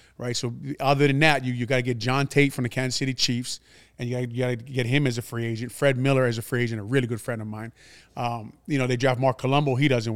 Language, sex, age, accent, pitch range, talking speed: English, male, 30-49, American, 120-145 Hz, 285 wpm